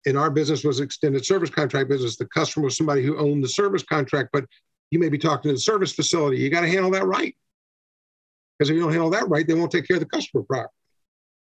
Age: 50-69